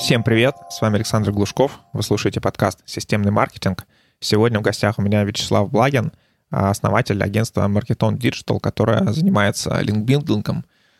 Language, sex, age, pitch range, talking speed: Russian, male, 20-39, 105-125 Hz, 135 wpm